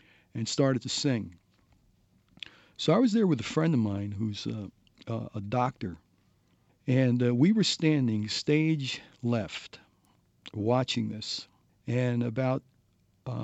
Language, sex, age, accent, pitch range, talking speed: English, male, 50-69, American, 110-145 Hz, 130 wpm